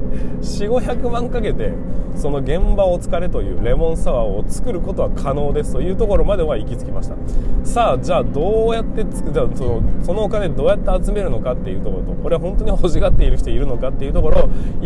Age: 20-39